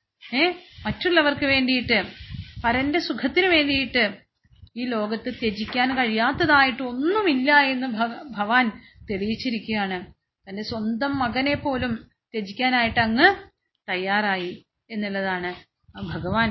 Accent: native